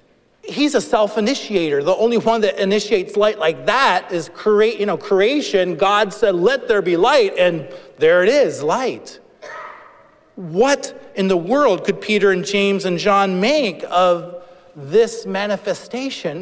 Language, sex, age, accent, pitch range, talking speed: English, male, 40-59, American, 180-230 Hz, 150 wpm